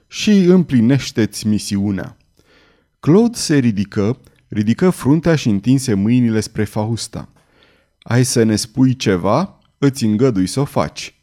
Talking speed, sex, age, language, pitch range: 125 wpm, male, 30-49, Romanian, 105-140 Hz